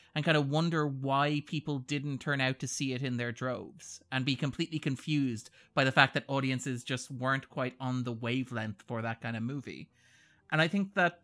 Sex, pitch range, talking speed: male, 120-160 Hz, 210 wpm